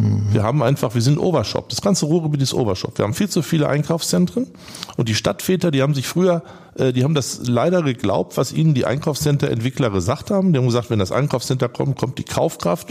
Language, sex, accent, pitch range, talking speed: German, male, German, 115-155 Hz, 210 wpm